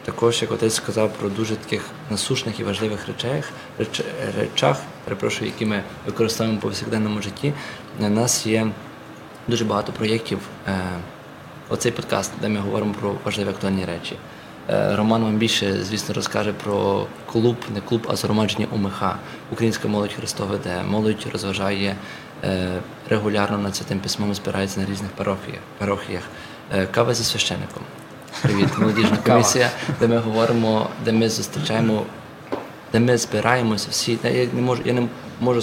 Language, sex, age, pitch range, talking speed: Ukrainian, male, 20-39, 105-120 Hz, 140 wpm